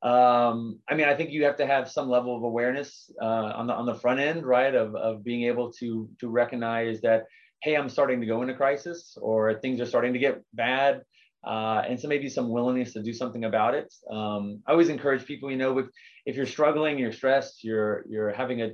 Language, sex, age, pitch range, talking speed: English, male, 30-49, 115-130 Hz, 225 wpm